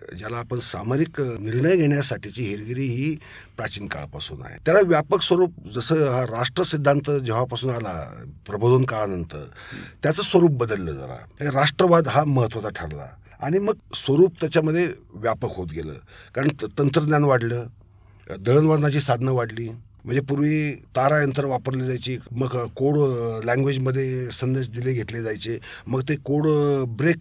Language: Marathi